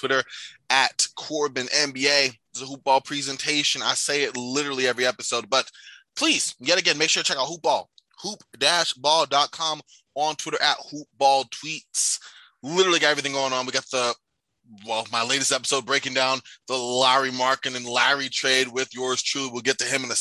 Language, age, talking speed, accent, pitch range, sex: English, 20-39, 190 wpm, American, 130-160 Hz, male